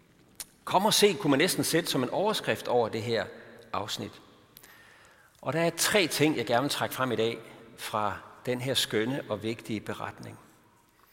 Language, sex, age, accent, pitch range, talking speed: Danish, male, 60-79, native, 125-155 Hz, 180 wpm